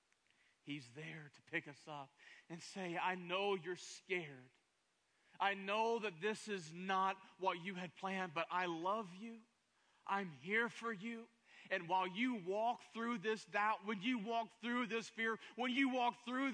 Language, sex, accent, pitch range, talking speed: English, male, American, 140-200 Hz, 170 wpm